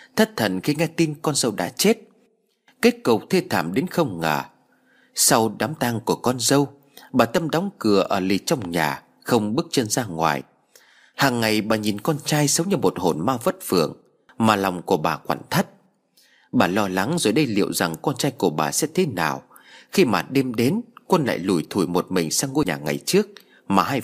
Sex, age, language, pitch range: male, 30-49, Vietnamese, 115-170 Hz